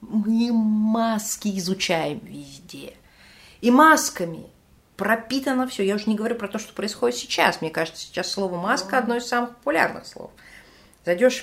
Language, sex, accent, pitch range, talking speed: Russian, female, native, 165-240 Hz, 145 wpm